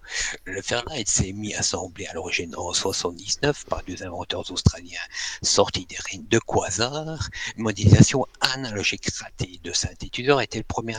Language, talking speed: French, 145 wpm